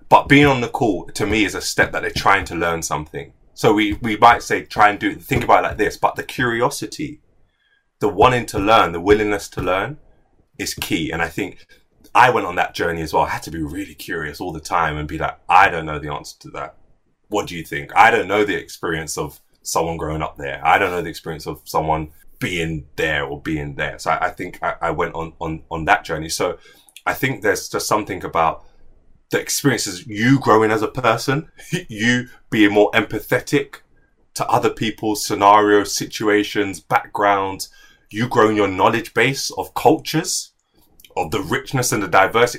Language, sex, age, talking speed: English, male, 20-39, 205 wpm